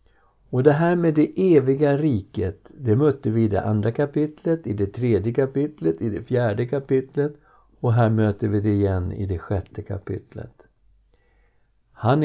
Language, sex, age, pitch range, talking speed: Swedish, male, 60-79, 100-120 Hz, 160 wpm